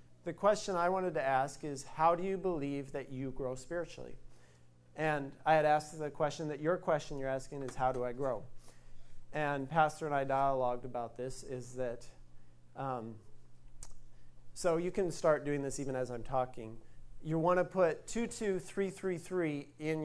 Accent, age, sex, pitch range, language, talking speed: American, 40-59, male, 125-160 Hz, English, 170 wpm